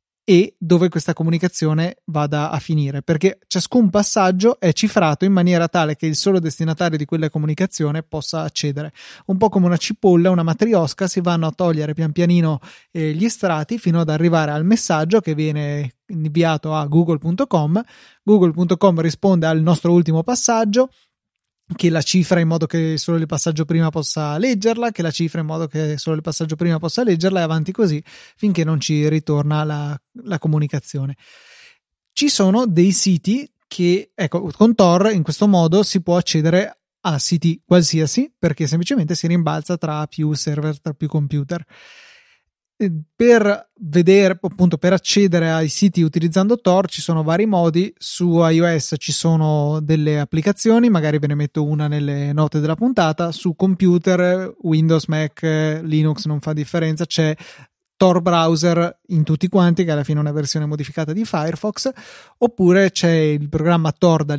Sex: male